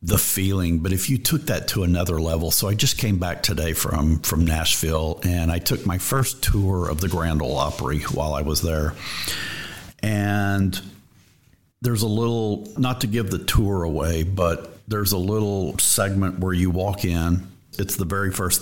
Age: 50-69